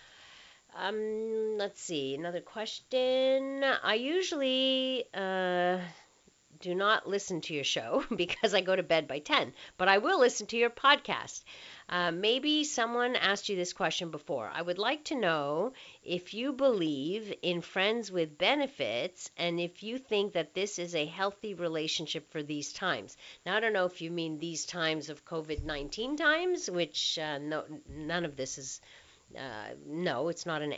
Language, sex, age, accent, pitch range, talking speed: English, female, 50-69, American, 155-220 Hz, 165 wpm